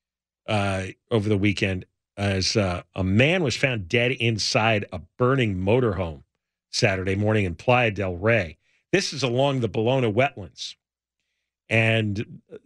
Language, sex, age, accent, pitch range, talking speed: English, male, 50-69, American, 100-130 Hz, 135 wpm